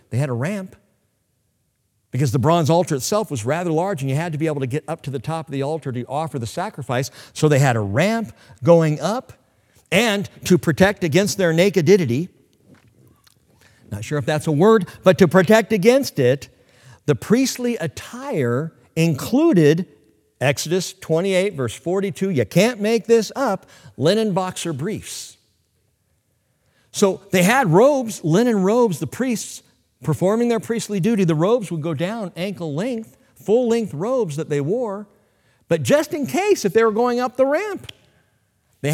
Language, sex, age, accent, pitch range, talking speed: English, male, 50-69, American, 130-195 Hz, 165 wpm